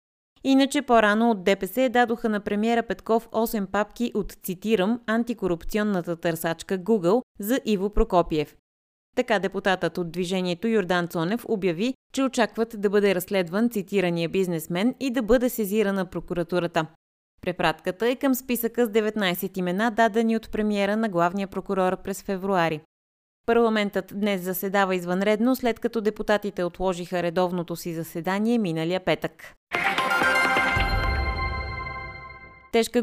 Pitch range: 175-225 Hz